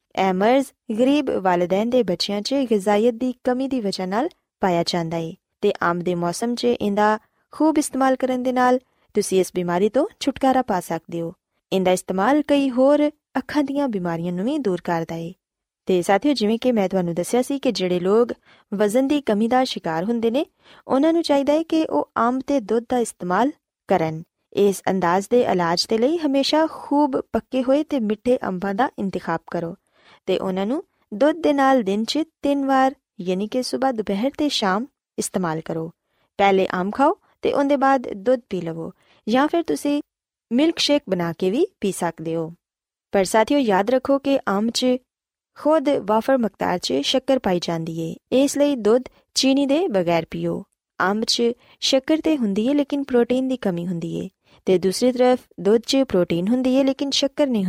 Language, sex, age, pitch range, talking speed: Punjabi, female, 20-39, 190-275 Hz, 150 wpm